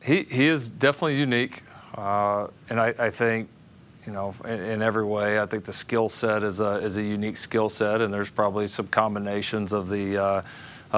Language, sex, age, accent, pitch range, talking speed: English, male, 40-59, American, 100-110 Hz, 195 wpm